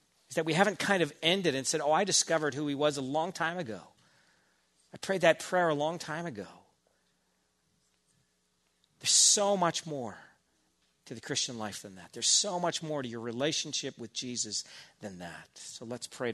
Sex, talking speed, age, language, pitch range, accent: male, 185 wpm, 40-59, English, 95-135 Hz, American